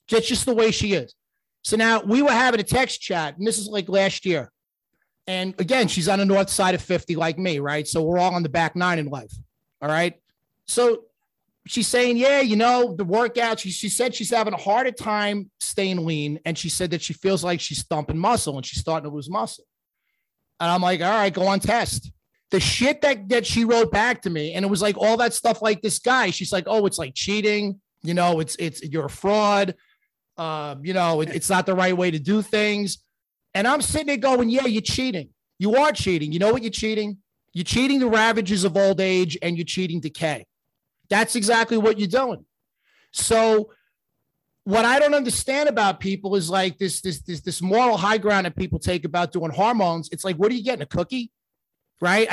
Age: 30-49